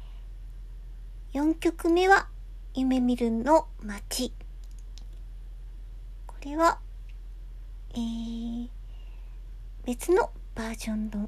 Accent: native